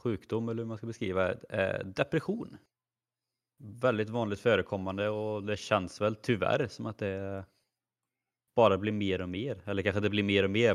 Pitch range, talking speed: 95-110 Hz, 175 wpm